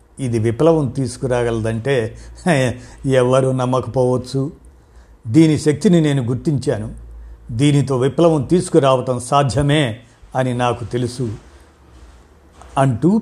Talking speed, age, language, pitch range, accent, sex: 75 wpm, 50-69, Telugu, 120-160 Hz, native, male